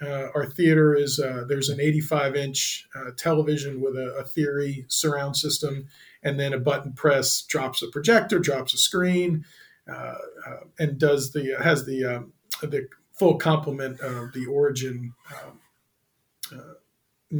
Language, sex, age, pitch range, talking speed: English, male, 40-59, 140-185 Hz, 160 wpm